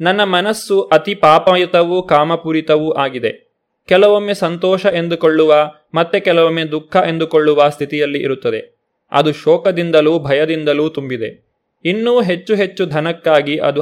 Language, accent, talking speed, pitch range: Kannada, native, 105 wpm, 150-185 Hz